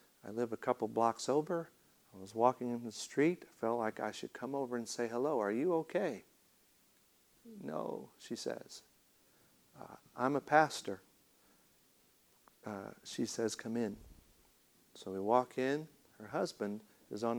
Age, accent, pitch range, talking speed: 50-69, American, 105-125 Hz, 155 wpm